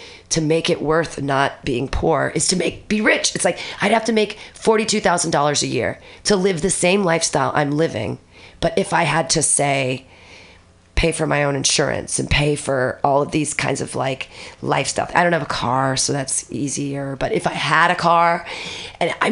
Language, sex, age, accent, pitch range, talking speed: English, female, 30-49, American, 145-200 Hz, 200 wpm